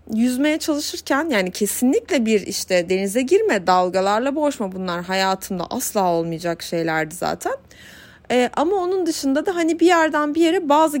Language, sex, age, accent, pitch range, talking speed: Turkish, female, 30-49, native, 200-295 Hz, 145 wpm